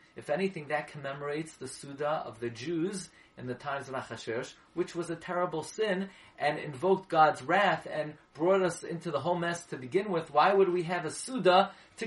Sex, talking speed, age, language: male, 200 wpm, 30-49, English